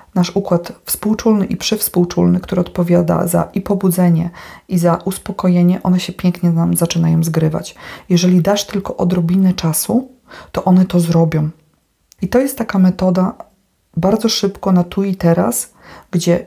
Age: 40-59